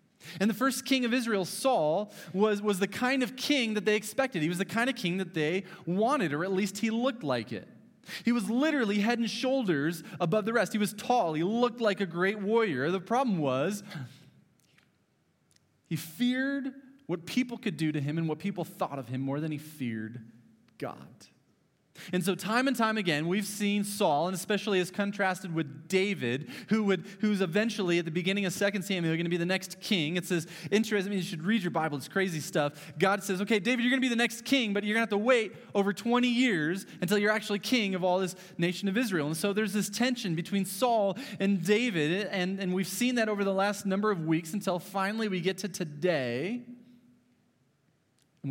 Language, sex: English, male